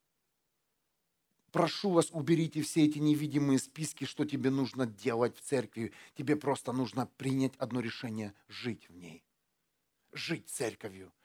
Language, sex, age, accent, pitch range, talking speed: Russian, male, 40-59, native, 130-170 Hz, 130 wpm